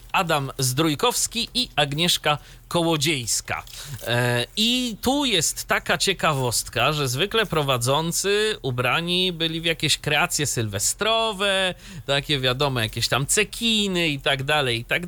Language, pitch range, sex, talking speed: Polish, 130-185 Hz, male, 110 wpm